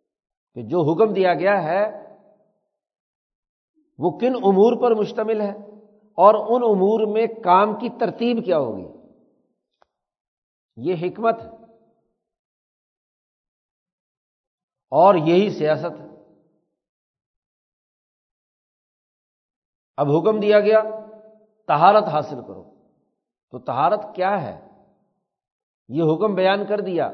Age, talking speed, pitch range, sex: 60-79, 95 wpm, 150-205 Hz, male